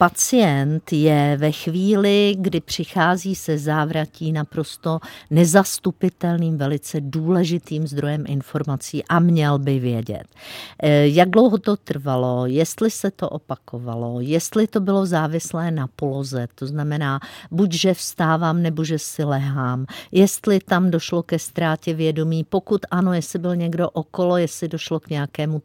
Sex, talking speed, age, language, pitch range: female, 130 wpm, 50-69, Czech, 155-185 Hz